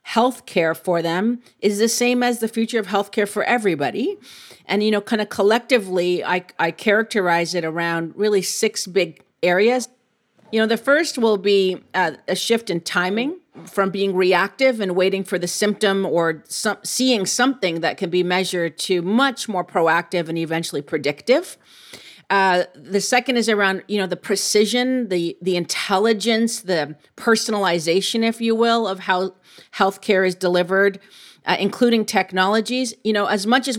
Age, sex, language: 40-59, female, English